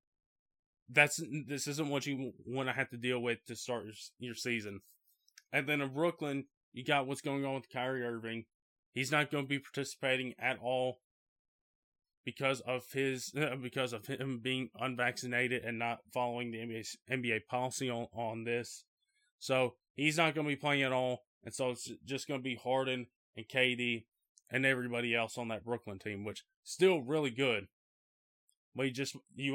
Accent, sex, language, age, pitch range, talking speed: American, male, English, 20-39, 120-150 Hz, 175 wpm